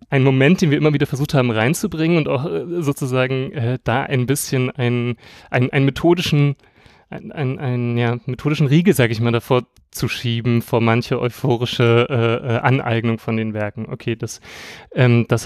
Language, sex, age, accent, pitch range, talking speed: German, male, 30-49, German, 120-150 Hz, 175 wpm